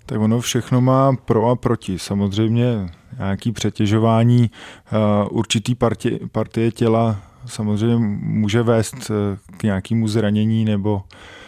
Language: Czech